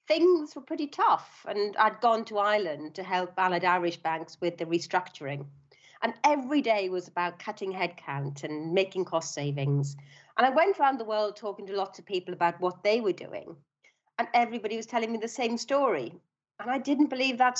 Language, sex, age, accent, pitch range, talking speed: English, female, 40-59, British, 175-250 Hz, 195 wpm